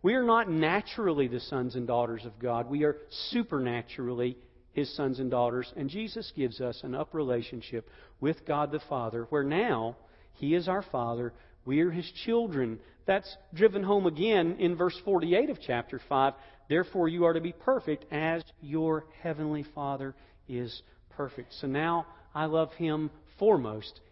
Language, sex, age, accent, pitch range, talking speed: English, male, 50-69, American, 120-180 Hz, 165 wpm